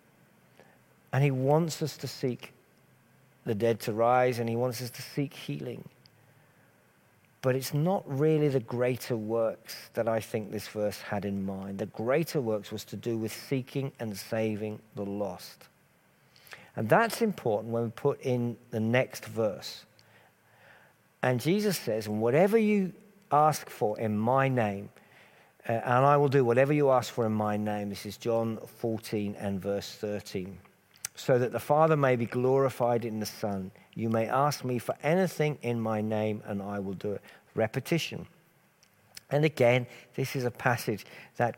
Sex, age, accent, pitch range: male, 50-69, British, 110-150 Hz